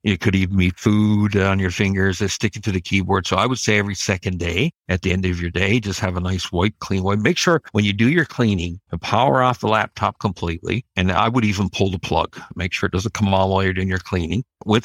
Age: 60-79